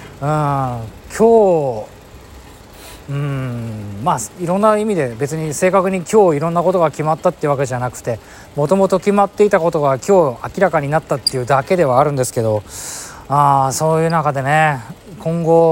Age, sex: 20-39, male